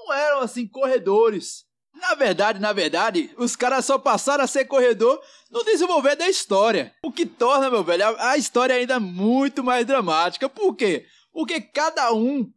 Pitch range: 205-275 Hz